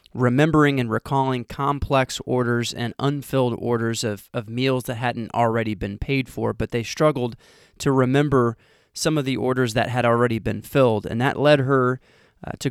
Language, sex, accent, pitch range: English, male, American, 115-135 Hz